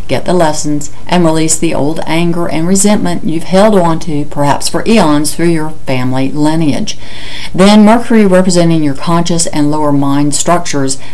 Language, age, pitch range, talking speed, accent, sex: English, 60-79, 145-180 Hz, 160 wpm, American, female